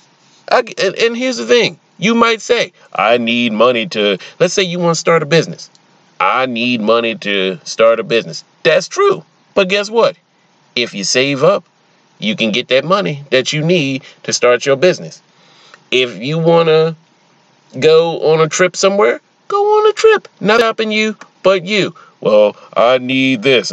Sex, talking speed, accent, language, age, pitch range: male, 175 wpm, American, English, 30-49, 145-220 Hz